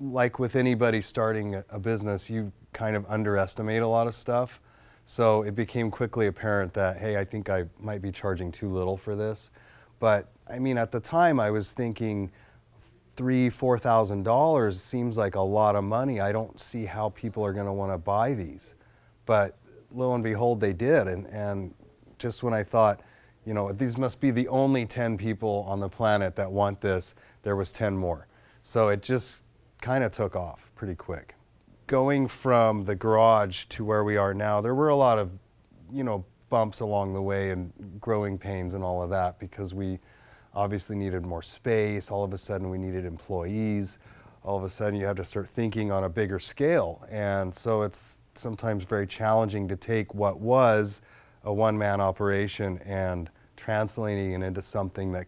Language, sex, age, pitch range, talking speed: English, male, 30-49, 100-115 Hz, 185 wpm